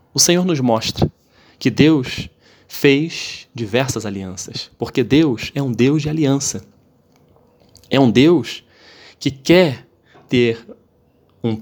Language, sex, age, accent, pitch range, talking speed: Portuguese, male, 20-39, Brazilian, 105-125 Hz, 120 wpm